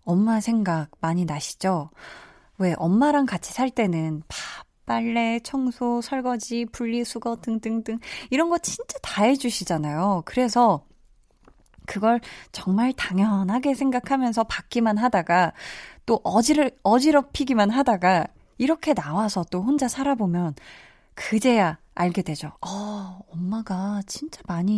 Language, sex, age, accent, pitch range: Korean, female, 20-39, native, 180-245 Hz